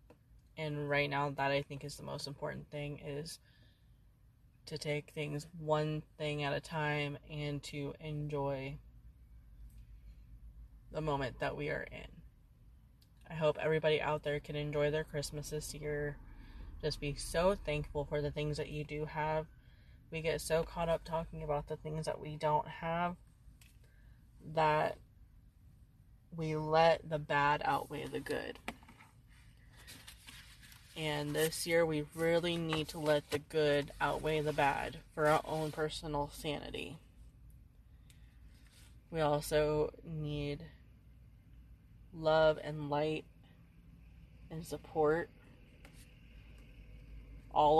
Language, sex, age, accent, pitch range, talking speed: English, female, 20-39, American, 140-155 Hz, 125 wpm